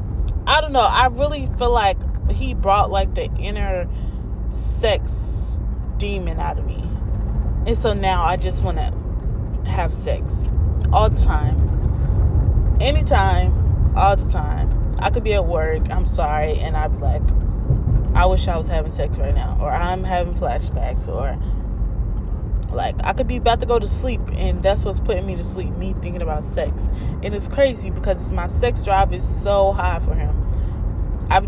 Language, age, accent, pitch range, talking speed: English, 10-29, American, 80-100 Hz, 170 wpm